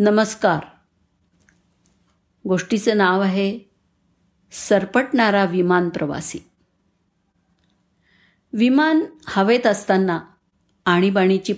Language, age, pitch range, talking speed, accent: Marathi, 50-69, 180-235 Hz, 50 wpm, native